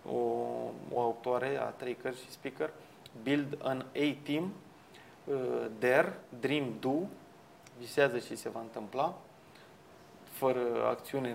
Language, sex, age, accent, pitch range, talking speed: Romanian, male, 20-39, native, 130-150 Hz, 115 wpm